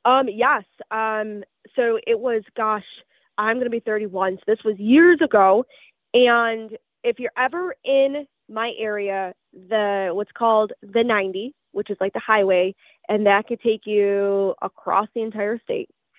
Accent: American